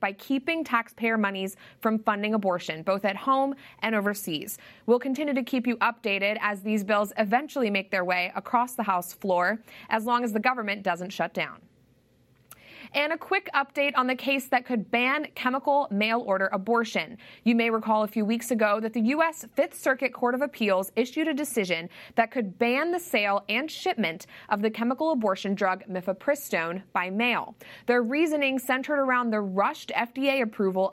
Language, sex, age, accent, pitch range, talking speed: English, female, 20-39, American, 200-255 Hz, 175 wpm